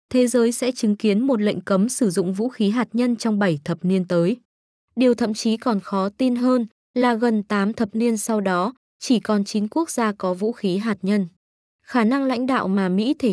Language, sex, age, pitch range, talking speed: Vietnamese, female, 20-39, 195-240 Hz, 225 wpm